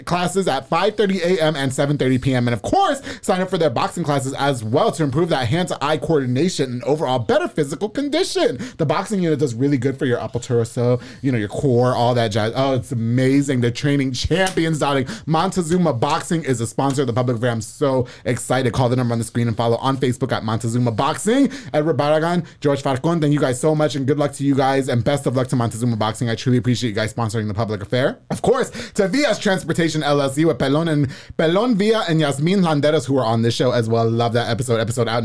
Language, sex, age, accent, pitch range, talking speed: English, male, 30-49, American, 125-170 Hz, 225 wpm